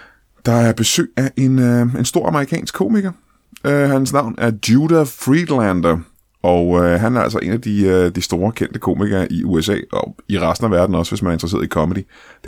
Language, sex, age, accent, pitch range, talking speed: Danish, male, 20-39, native, 95-120 Hz, 210 wpm